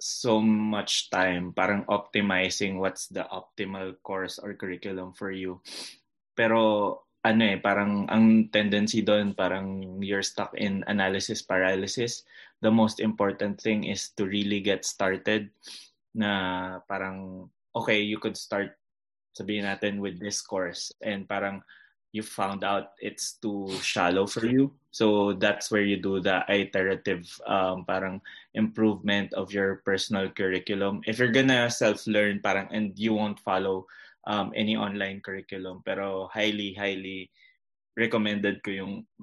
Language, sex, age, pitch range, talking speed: Filipino, male, 20-39, 95-105 Hz, 135 wpm